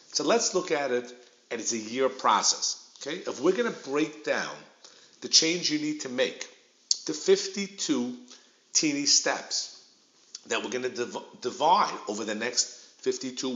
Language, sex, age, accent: English, male, 50-69, American